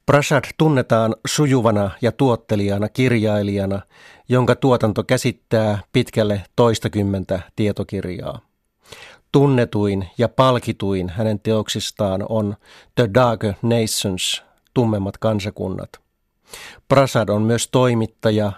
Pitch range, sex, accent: 105-125 Hz, male, native